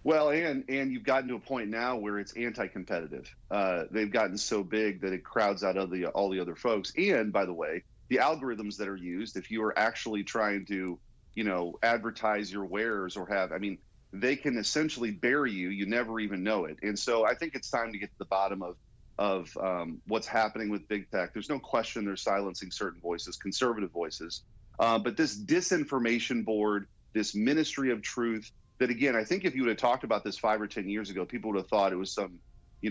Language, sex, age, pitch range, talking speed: English, male, 40-59, 100-125 Hz, 220 wpm